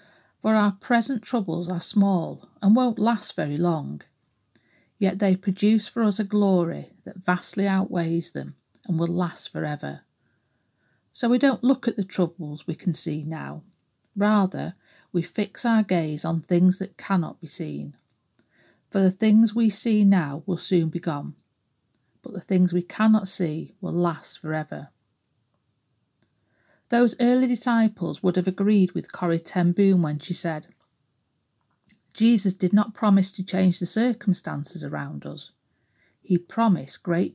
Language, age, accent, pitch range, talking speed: English, 50-69, British, 170-210 Hz, 150 wpm